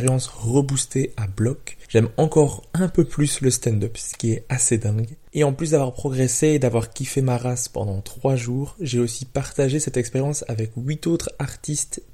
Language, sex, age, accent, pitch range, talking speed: French, male, 20-39, French, 115-135 Hz, 185 wpm